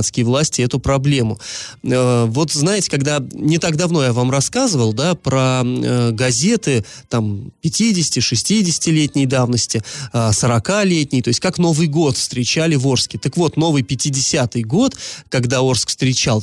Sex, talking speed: male, 130 wpm